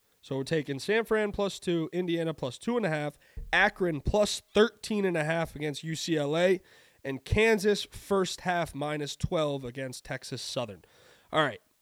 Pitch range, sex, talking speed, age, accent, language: 135-180 Hz, male, 165 wpm, 20-39, American, English